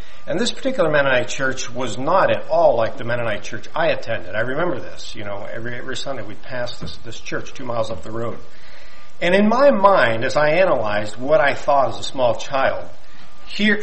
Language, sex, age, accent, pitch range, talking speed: English, male, 50-69, American, 115-190 Hz, 210 wpm